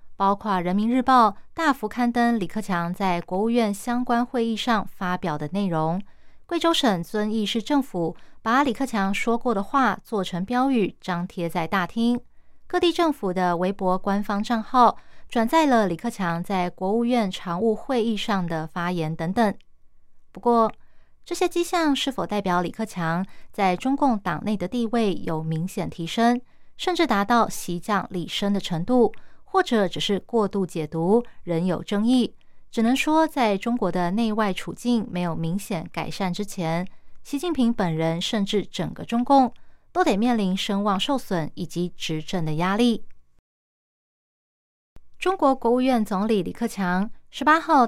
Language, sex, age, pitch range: Chinese, female, 20-39, 180-240 Hz